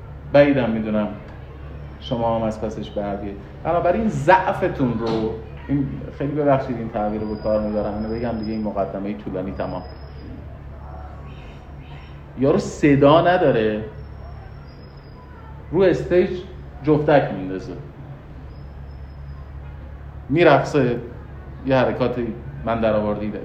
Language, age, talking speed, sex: Persian, 40-59, 100 wpm, male